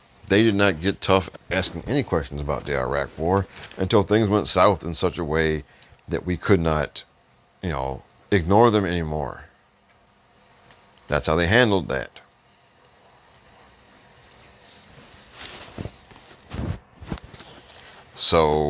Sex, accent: male, American